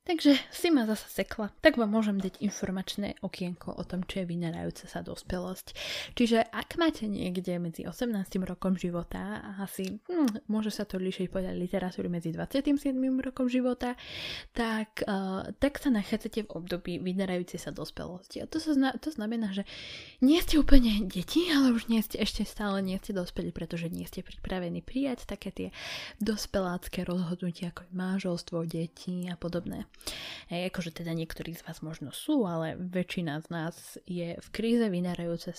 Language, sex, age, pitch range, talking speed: Slovak, female, 10-29, 180-215 Hz, 165 wpm